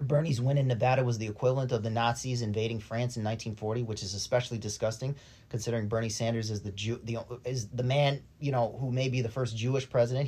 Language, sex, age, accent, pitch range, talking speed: English, male, 30-49, American, 115-140 Hz, 220 wpm